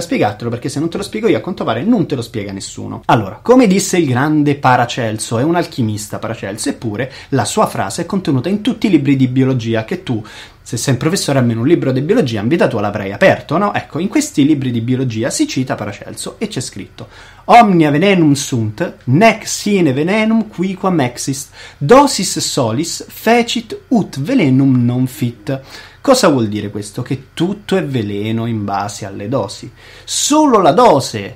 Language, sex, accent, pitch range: Italian, male, native, 110-165 Hz